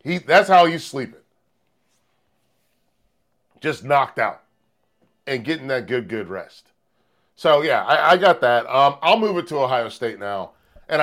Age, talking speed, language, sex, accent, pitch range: 40-59, 165 wpm, English, male, American, 125-150 Hz